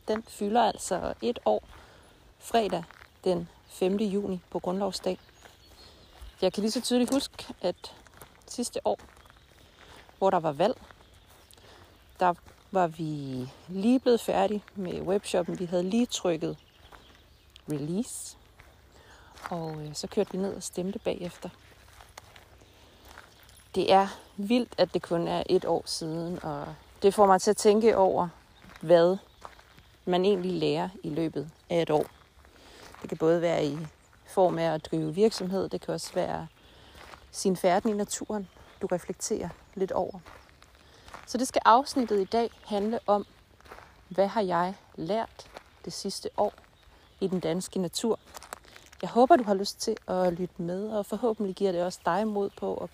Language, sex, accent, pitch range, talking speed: Danish, female, native, 160-205 Hz, 150 wpm